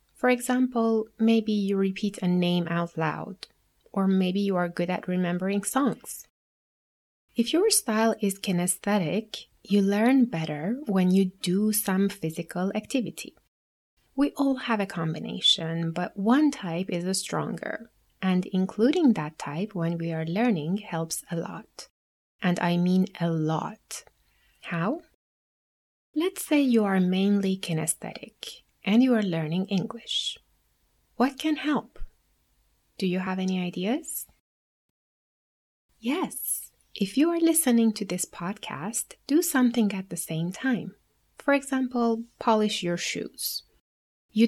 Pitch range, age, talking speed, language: 175-235 Hz, 30-49, 130 wpm, English